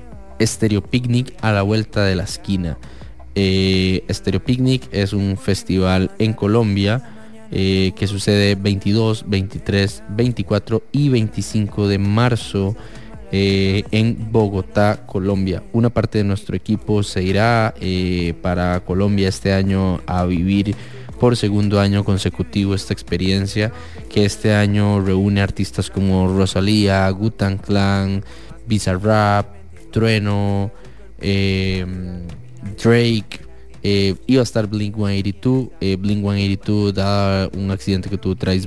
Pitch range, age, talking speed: 95-110 Hz, 20-39, 120 wpm